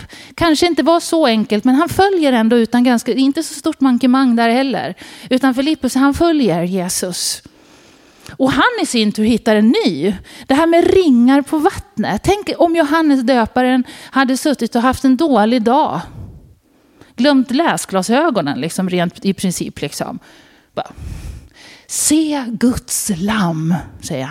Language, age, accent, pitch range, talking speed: Swedish, 30-49, native, 210-285 Hz, 145 wpm